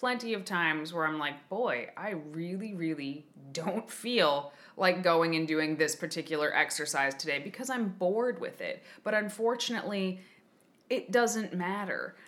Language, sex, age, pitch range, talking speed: English, female, 20-39, 175-240 Hz, 145 wpm